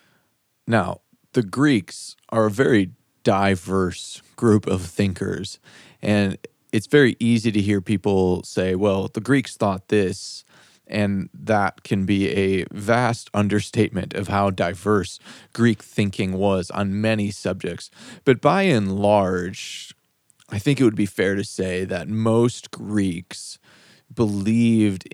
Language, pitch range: English, 95-110 Hz